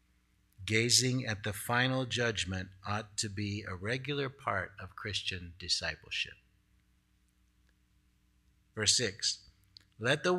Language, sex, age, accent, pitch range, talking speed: English, male, 50-69, American, 95-140 Hz, 105 wpm